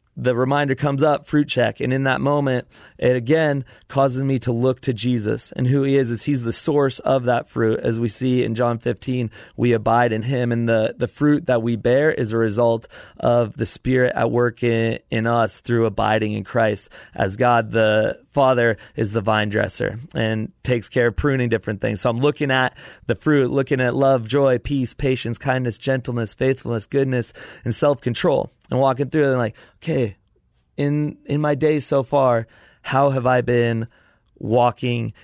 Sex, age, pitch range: male, 30-49, 115-135 Hz